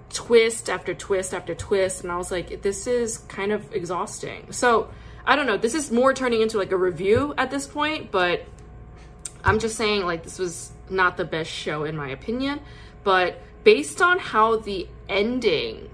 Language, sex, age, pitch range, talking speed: English, female, 20-39, 170-225 Hz, 185 wpm